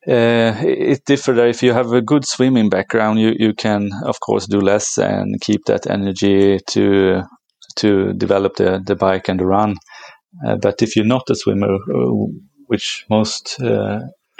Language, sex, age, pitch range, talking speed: English, male, 30-49, 100-115 Hz, 165 wpm